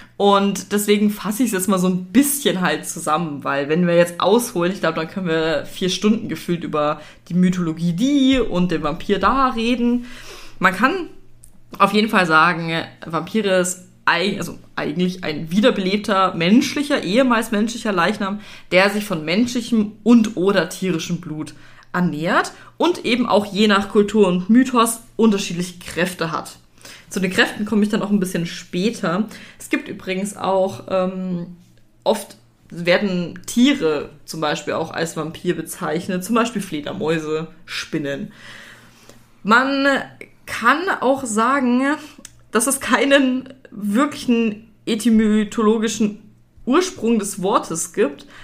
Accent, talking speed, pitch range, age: German, 135 wpm, 175-235 Hz, 20-39